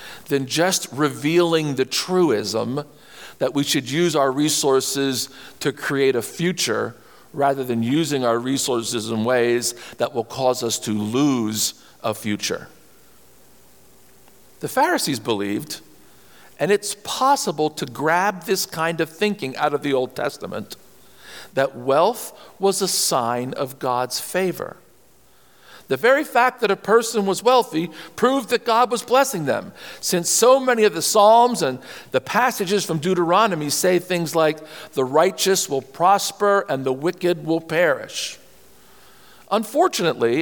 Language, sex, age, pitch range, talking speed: English, male, 50-69, 135-200 Hz, 140 wpm